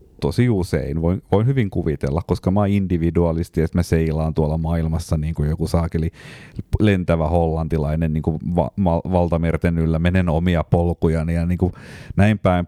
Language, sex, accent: Finnish, male, native